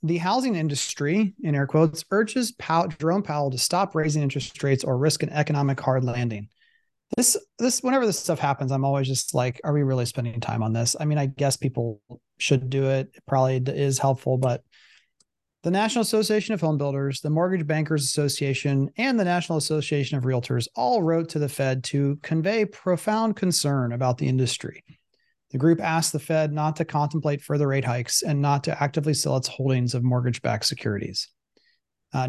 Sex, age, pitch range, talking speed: male, 30-49, 130-165 Hz, 190 wpm